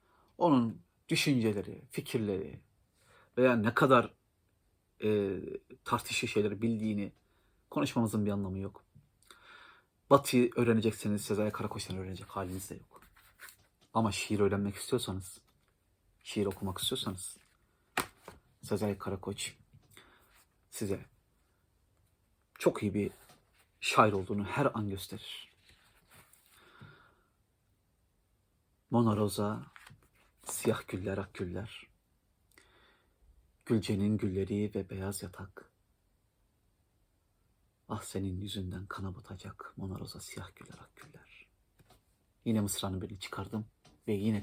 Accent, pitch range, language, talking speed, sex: native, 95-115 Hz, Turkish, 85 wpm, male